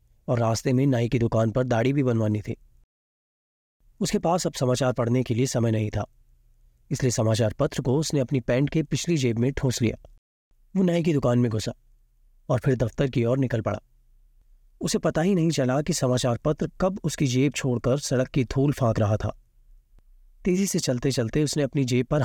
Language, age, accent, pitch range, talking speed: Hindi, 30-49, native, 115-145 Hz, 195 wpm